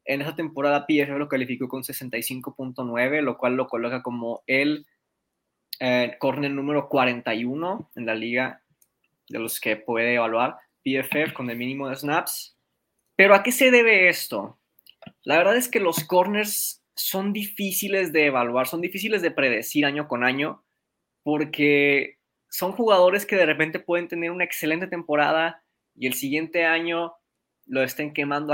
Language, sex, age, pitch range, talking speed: Spanish, male, 20-39, 135-170 Hz, 155 wpm